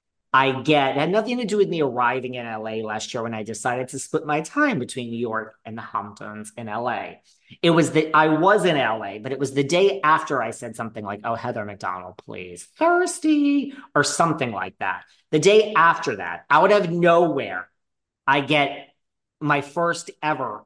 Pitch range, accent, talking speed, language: 115-160 Hz, American, 195 wpm, English